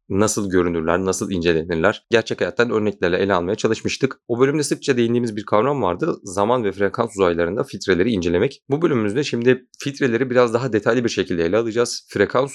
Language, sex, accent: Turkish, male, native